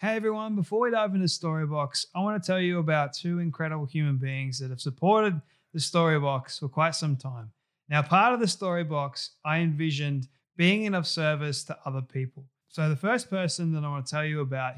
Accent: Australian